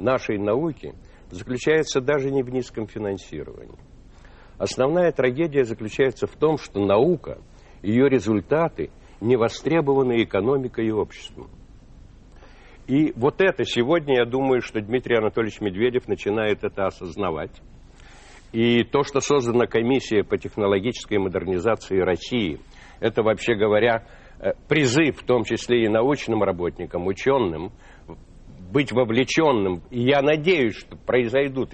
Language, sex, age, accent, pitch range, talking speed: Russian, male, 60-79, native, 95-130 Hz, 115 wpm